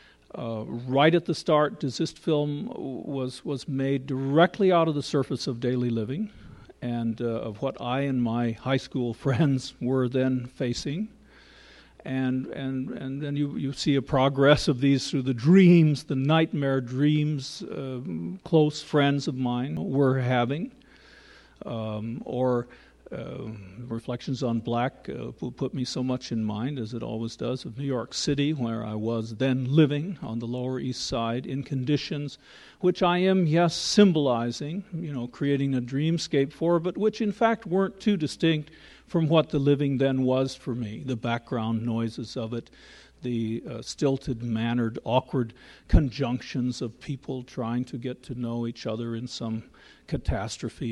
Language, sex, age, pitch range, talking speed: English, male, 50-69, 120-150 Hz, 160 wpm